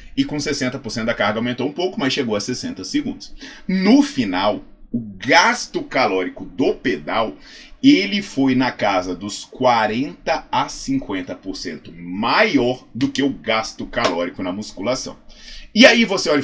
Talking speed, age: 145 wpm, 20-39